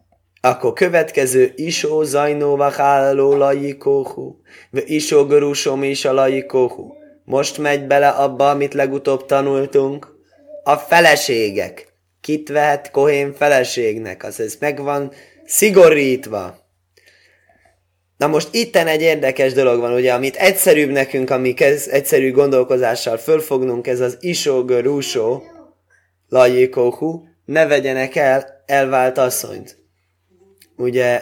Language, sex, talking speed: Hungarian, male, 105 wpm